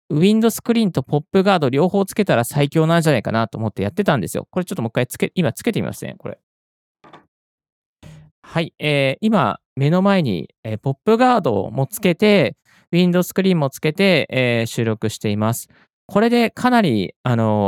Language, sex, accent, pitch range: Japanese, male, native, 115-180 Hz